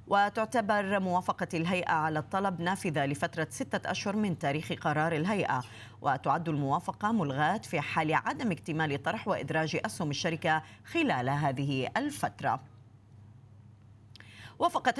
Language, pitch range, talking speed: Arabic, 165-210 Hz, 110 wpm